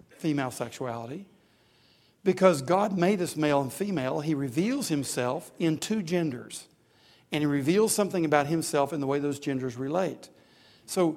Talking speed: 150 wpm